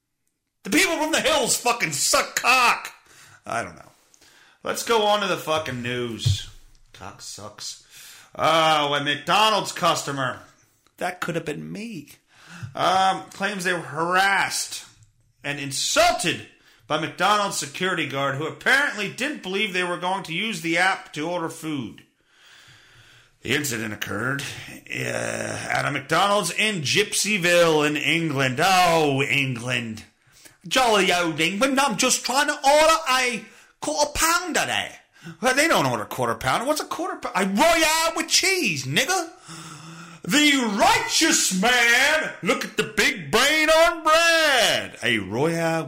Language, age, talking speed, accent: English, 40-59, 140 wpm, American